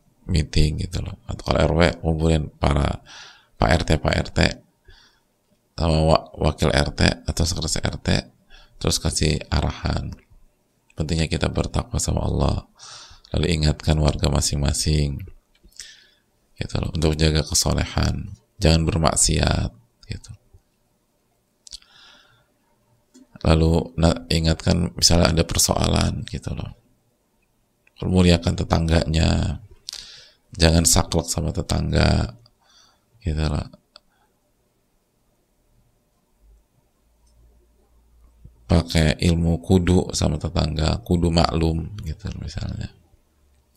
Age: 30-49